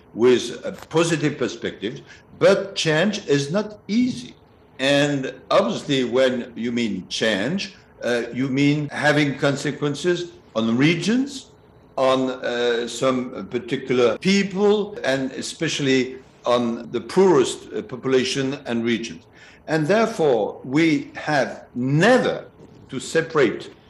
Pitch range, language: 125-185 Hz, English